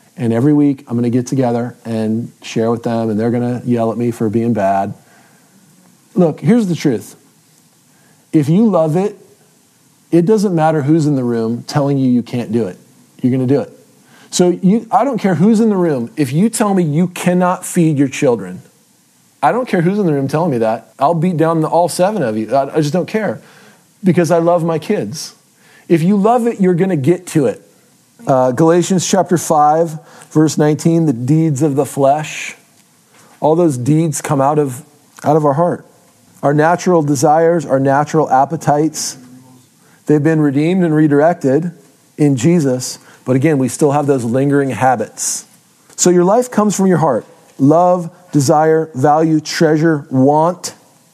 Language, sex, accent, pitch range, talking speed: English, male, American, 135-175 Hz, 180 wpm